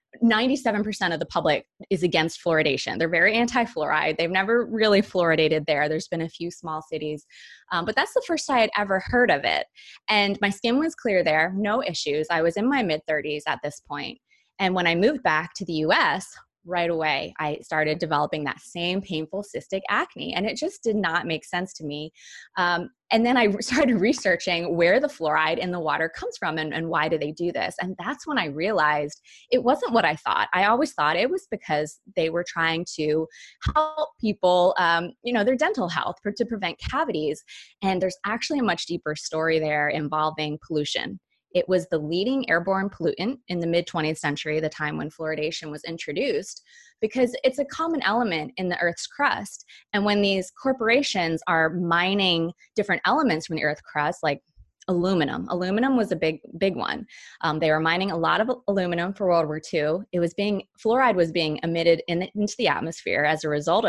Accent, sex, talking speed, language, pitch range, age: American, female, 195 wpm, English, 160-215 Hz, 20-39